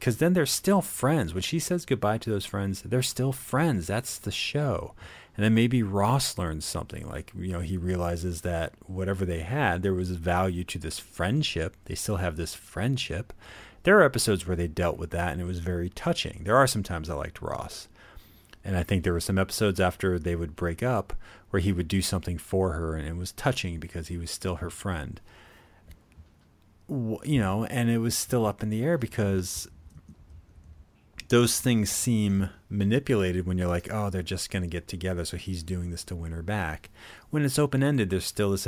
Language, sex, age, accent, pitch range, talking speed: English, male, 40-59, American, 85-110 Hz, 205 wpm